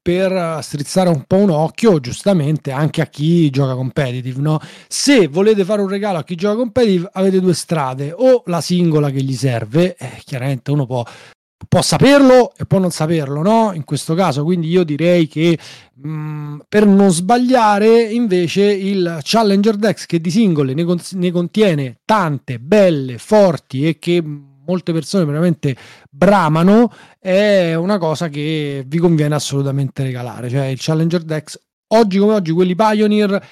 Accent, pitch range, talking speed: native, 150-205 Hz, 160 wpm